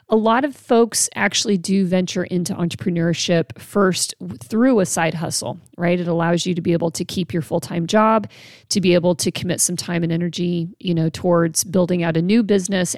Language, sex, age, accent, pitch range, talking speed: English, female, 40-59, American, 170-195 Hz, 200 wpm